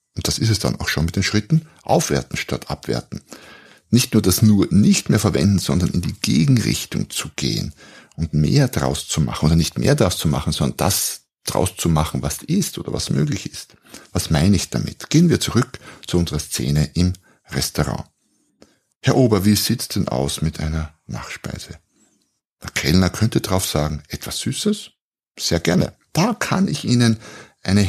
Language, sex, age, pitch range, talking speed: German, male, 60-79, 75-110 Hz, 180 wpm